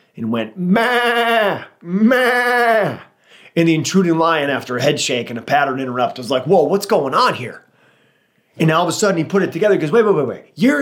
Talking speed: 215 wpm